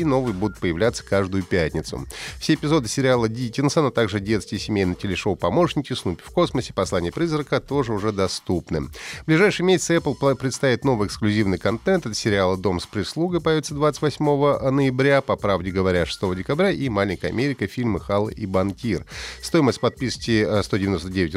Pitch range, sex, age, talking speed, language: 105-160 Hz, male, 30-49, 155 wpm, Russian